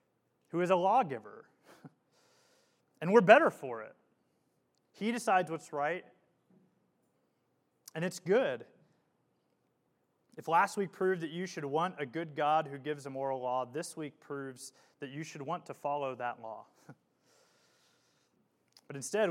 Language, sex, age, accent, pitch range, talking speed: English, male, 30-49, American, 140-180 Hz, 140 wpm